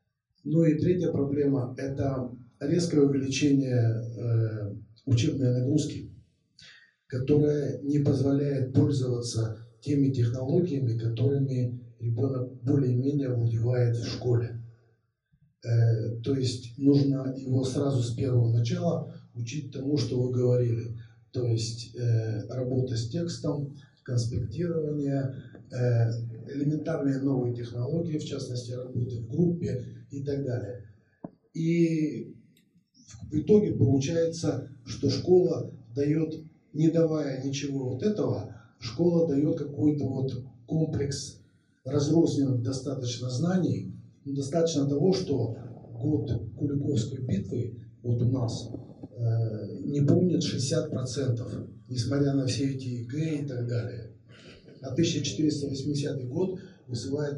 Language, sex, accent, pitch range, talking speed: Russian, male, native, 120-145 Hz, 105 wpm